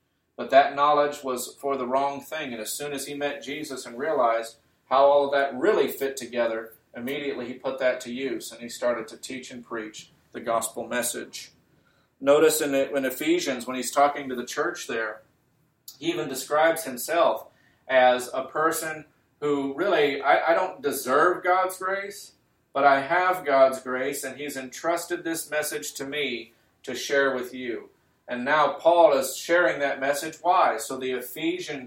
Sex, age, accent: male, 40-59, American